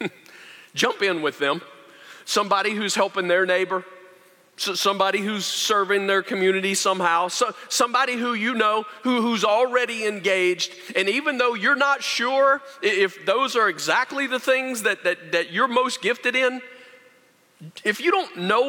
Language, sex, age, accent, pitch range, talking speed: English, male, 40-59, American, 210-280 Hz, 150 wpm